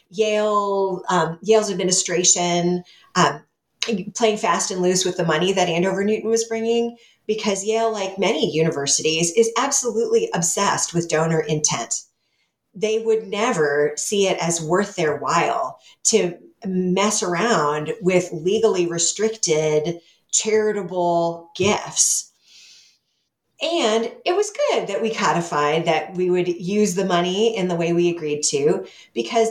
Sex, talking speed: female, 130 wpm